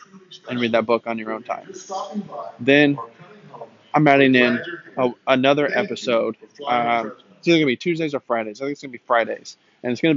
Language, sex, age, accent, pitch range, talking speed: English, male, 20-39, American, 115-130 Hz, 195 wpm